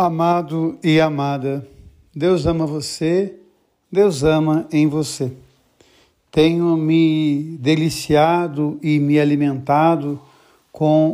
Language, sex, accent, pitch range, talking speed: Portuguese, male, Brazilian, 150-175 Hz, 90 wpm